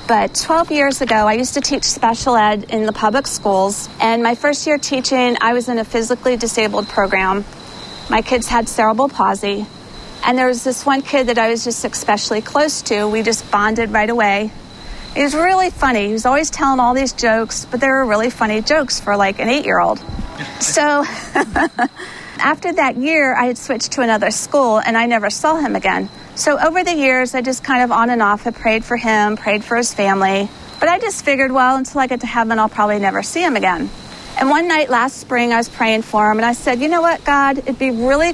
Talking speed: 220 wpm